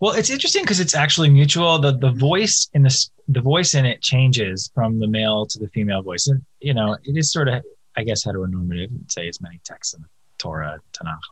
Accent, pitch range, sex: American, 110-145 Hz, male